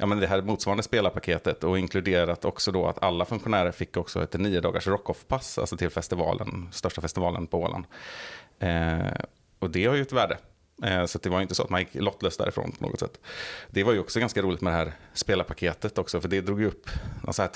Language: Swedish